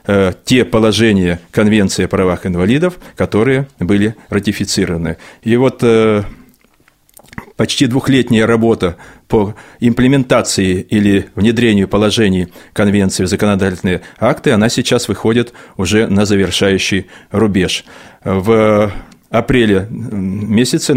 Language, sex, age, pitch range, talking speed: Russian, male, 30-49, 100-120 Hz, 95 wpm